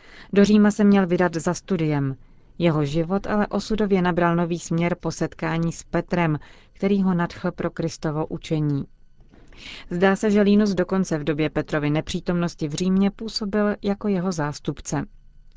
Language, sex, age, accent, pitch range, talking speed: Czech, female, 30-49, native, 150-180 Hz, 150 wpm